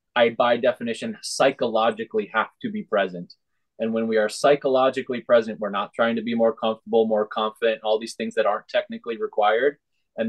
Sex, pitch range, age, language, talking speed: male, 110-145 Hz, 20-39, English, 180 wpm